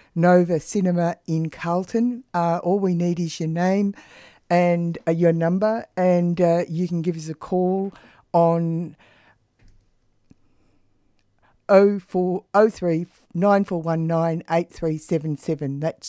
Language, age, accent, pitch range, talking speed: English, 50-69, Australian, 155-180 Hz, 105 wpm